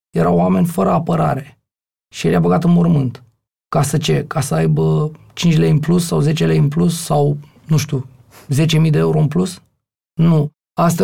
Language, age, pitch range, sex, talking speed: Romanian, 30-49, 135-155 Hz, male, 190 wpm